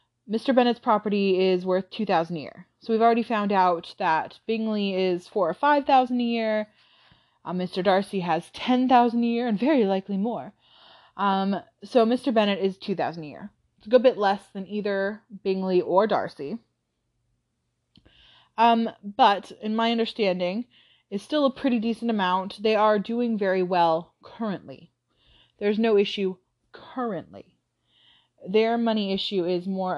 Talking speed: 150 wpm